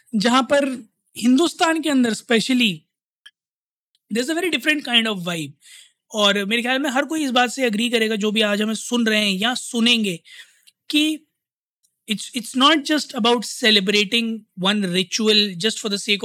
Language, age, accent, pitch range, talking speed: Hindi, 20-39, native, 205-275 Hz, 165 wpm